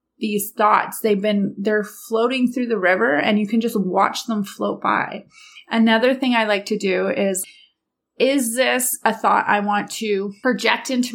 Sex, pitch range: female, 200-240 Hz